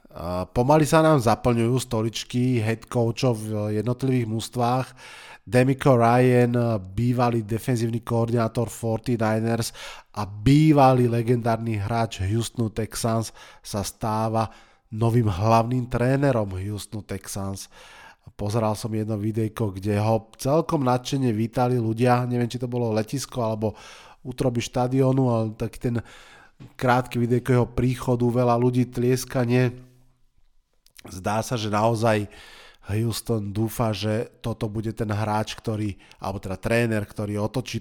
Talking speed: 115 wpm